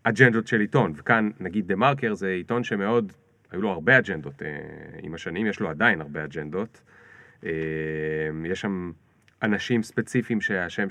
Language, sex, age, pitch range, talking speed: Hebrew, male, 30-49, 85-125 Hz, 145 wpm